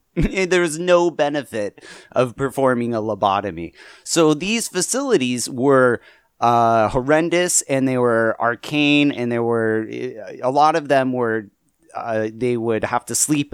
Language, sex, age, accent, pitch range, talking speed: English, male, 30-49, American, 115-155 Hz, 150 wpm